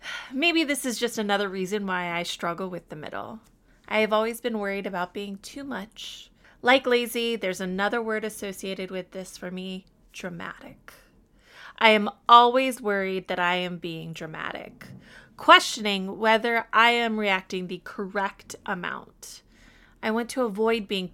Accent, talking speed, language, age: American, 155 wpm, English, 20-39